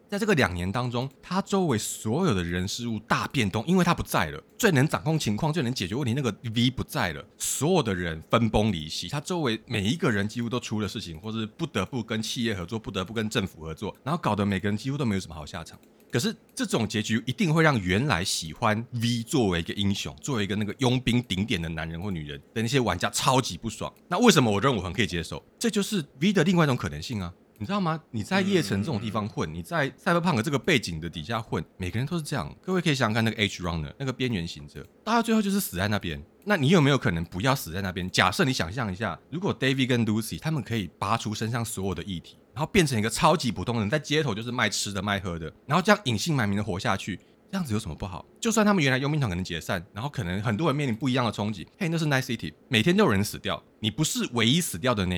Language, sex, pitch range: Chinese, male, 95-140 Hz